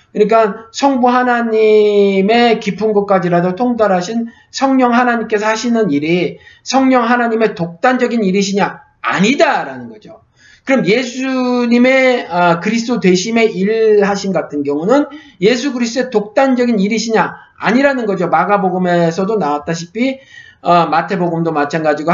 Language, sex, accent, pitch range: Korean, male, native, 175-250 Hz